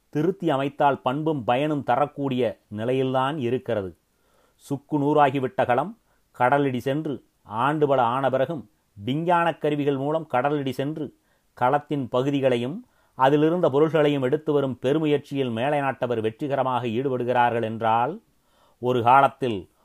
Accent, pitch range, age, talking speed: native, 120-145 Hz, 30-49, 100 wpm